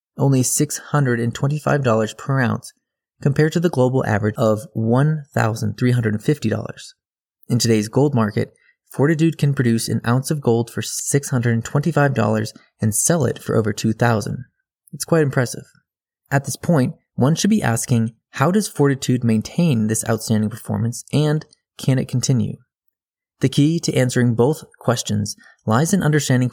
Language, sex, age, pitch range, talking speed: English, male, 20-39, 115-145 Hz, 135 wpm